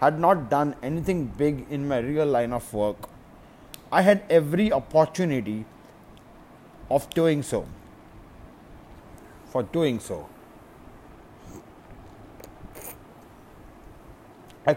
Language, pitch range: English, 125-165 Hz